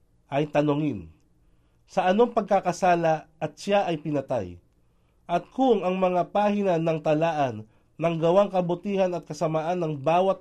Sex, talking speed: male, 135 wpm